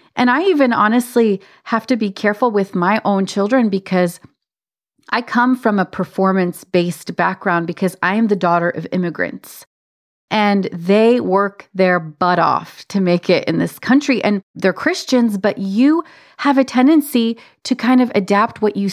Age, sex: 30-49, female